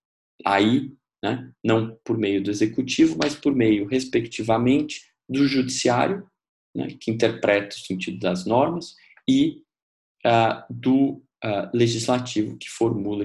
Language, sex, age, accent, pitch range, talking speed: English, male, 20-39, Brazilian, 95-130 Hz, 120 wpm